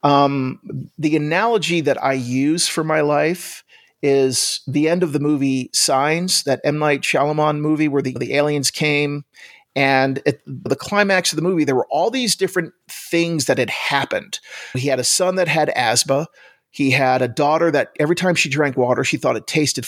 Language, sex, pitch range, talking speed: English, male, 130-155 Hz, 190 wpm